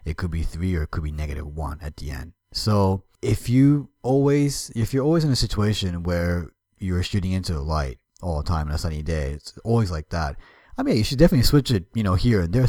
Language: English